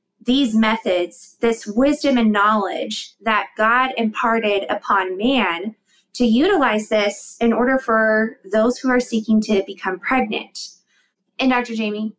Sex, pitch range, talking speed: female, 210-275 Hz, 135 wpm